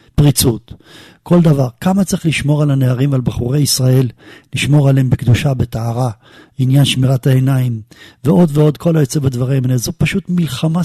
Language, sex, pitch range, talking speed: Hebrew, male, 130-155 Hz, 150 wpm